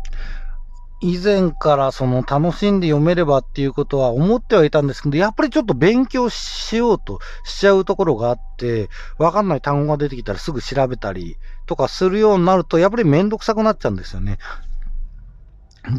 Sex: male